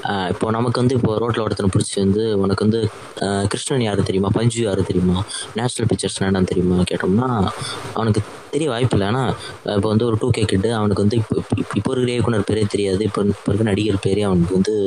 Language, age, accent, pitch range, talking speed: Tamil, 20-39, native, 100-125 Hz, 180 wpm